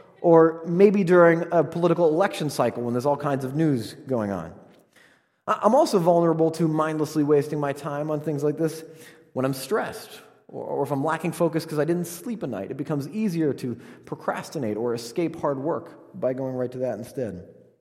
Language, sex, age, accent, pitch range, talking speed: English, male, 30-49, American, 125-175 Hz, 190 wpm